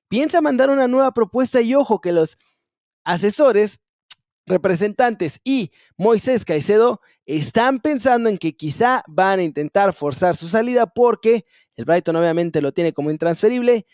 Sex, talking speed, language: male, 140 wpm, Spanish